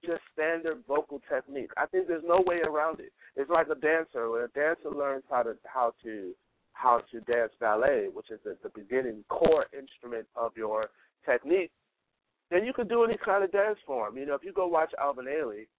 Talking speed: 200 wpm